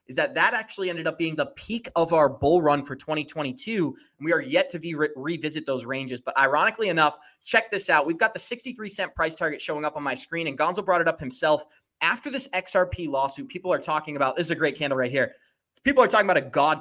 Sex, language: male, English